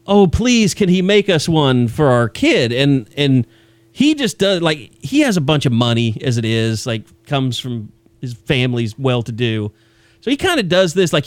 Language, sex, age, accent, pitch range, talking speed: English, male, 30-49, American, 115-160 Hz, 200 wpm